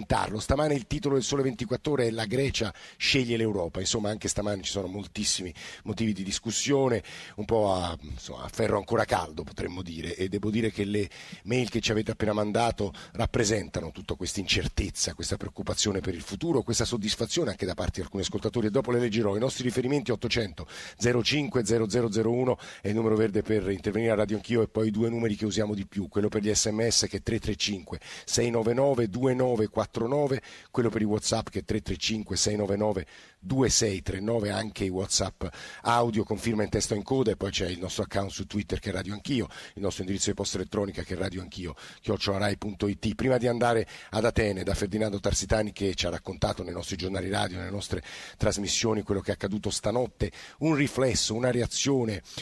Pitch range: 95-115 Hz